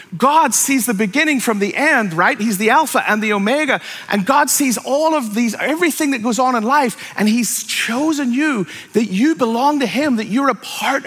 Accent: American